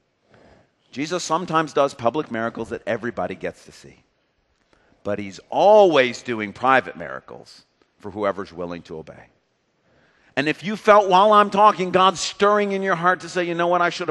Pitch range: 115-165 Hz